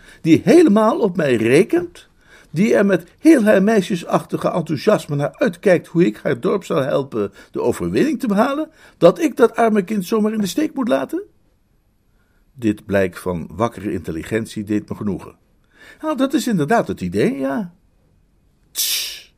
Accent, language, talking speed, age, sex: Dutch, Dutch, 160 wpm, 60-79, male